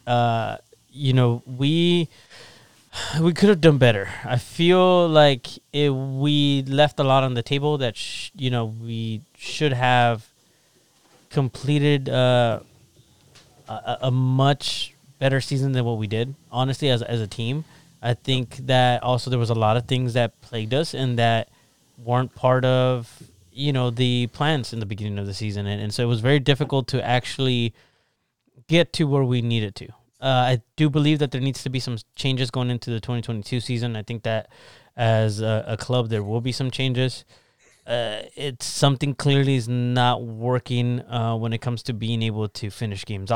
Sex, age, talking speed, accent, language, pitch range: male, 20-39, 185 wpm, American, English, 115-140 Hz